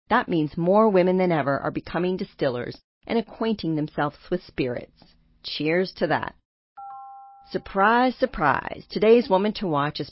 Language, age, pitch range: English, 40-59, 155-210 Hz